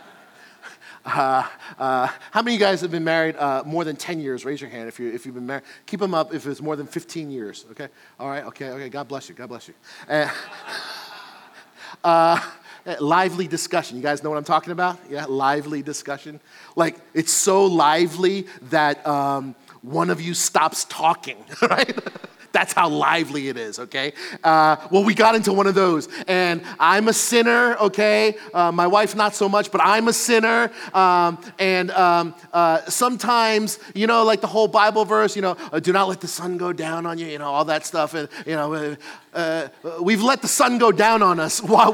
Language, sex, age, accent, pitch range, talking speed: English, male, 40-59, American, 155-210 Hz, 200 wpm